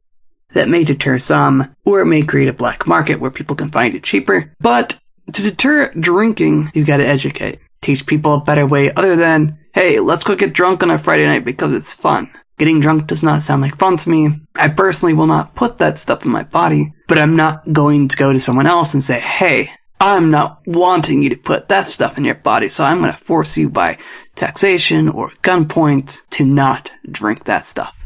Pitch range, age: 140-200 Hz, 20-39